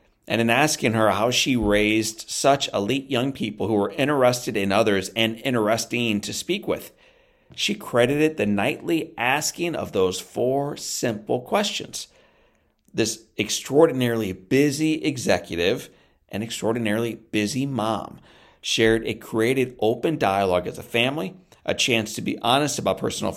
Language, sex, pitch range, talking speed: English, male, 105-135 Hz, 140 wpm